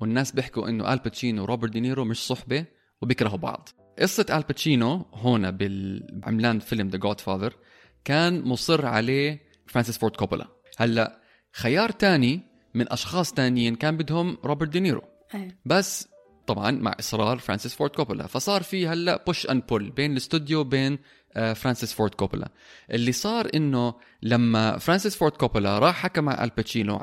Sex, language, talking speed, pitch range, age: male, Arabic, 140 wpm, 110-150 Hz, 20-39